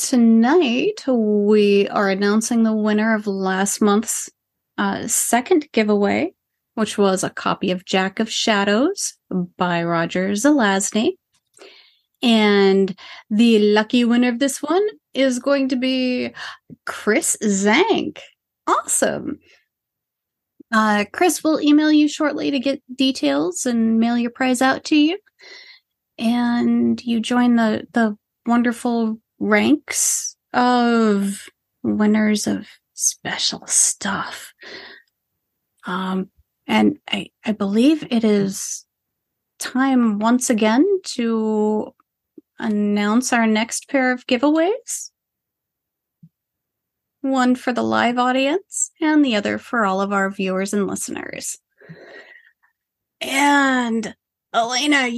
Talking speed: 110 wpm